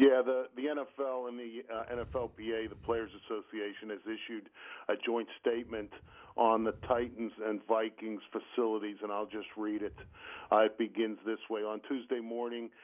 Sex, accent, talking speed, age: male, American, 165 wpm, 50-69